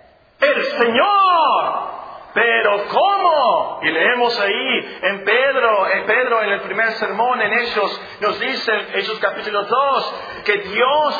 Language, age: Spanish, 40-59